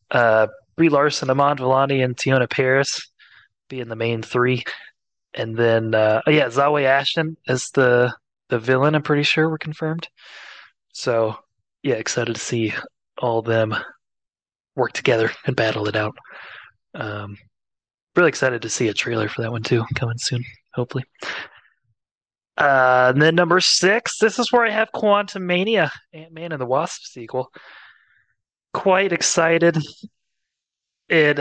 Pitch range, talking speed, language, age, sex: 115-150 Hz, 140 wpm, English, 20-39, male